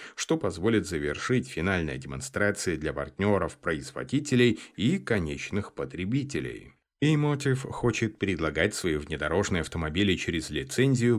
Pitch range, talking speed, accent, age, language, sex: 85-120 Hz, 100 wpm, native, 30-49, Russian, male